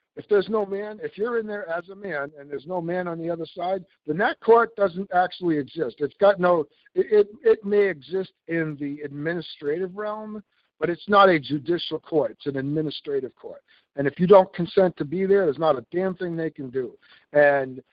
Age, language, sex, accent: 60-79, English, male, American